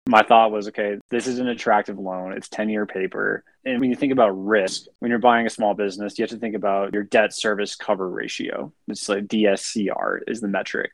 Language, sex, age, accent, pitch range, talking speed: English, male, 20-39, American, 95-110 Hz, 220 wpm